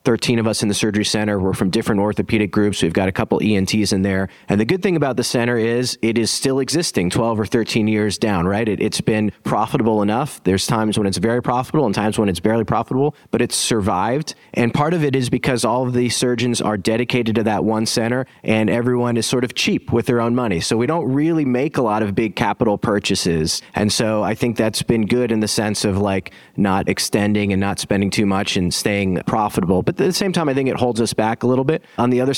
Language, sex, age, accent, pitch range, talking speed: English, male, 30-49, American, 105-125 Hz, 245 wpm